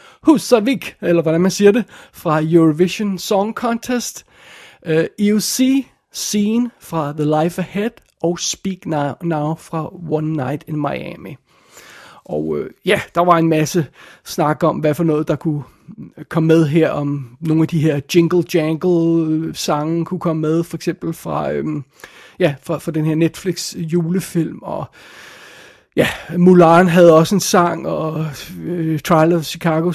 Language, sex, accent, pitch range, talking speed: Danish, male, native, 155-180 Hz, 145 wpm